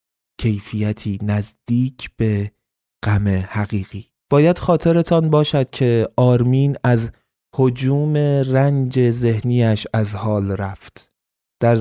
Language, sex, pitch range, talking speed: Persian, male, 110-125 Hz, 90 wpm